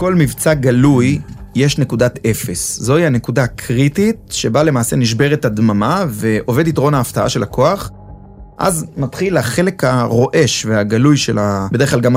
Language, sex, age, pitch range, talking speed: Hebrew, male, 30-49, 115-160 Hz, 135 wpm